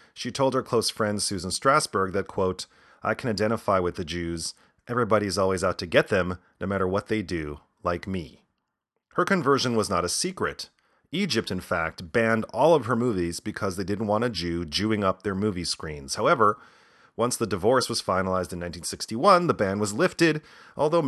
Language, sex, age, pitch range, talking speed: English, male, 30-49, 90-125 Hz, 190 wpm